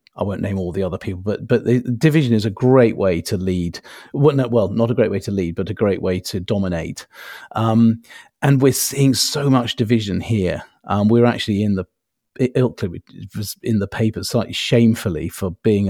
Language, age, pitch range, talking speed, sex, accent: English, 40-59, 100-125 Hz, 195 wpm, male, British